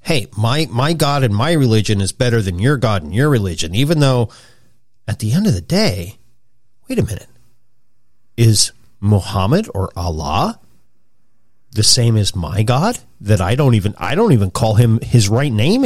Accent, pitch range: American, 115-160 Hz